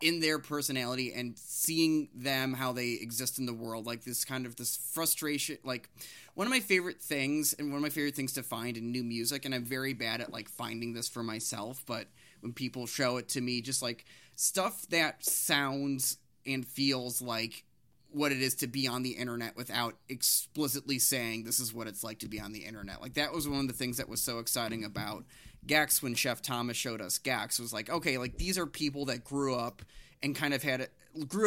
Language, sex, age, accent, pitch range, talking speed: English, male, 20-39, American, 120-140 Hz, 220 wpm